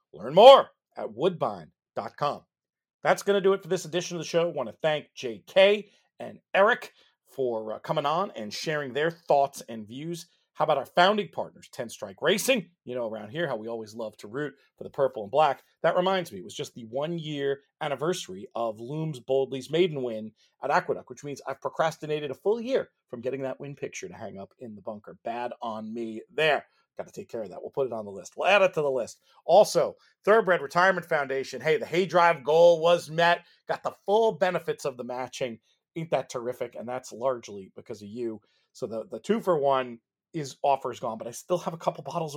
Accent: American